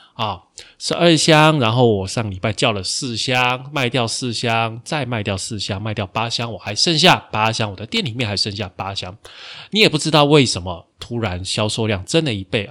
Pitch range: 105-135 Hz